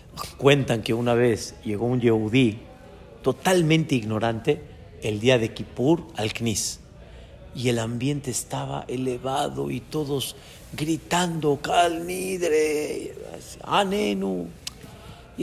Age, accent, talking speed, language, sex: 50-69, Mexican, 95 wpm, Spanish, male